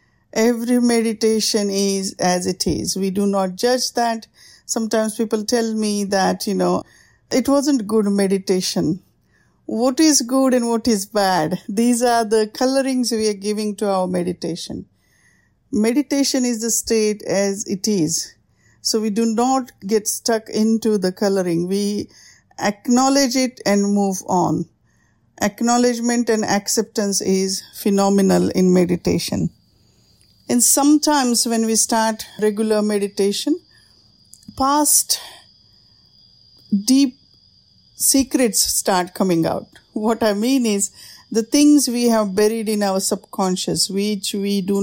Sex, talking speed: female, 130 wpm